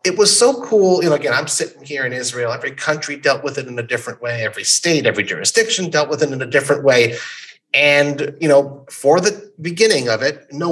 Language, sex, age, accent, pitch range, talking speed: English, male, 30-49, American, 125-165 Hz, 230 wpm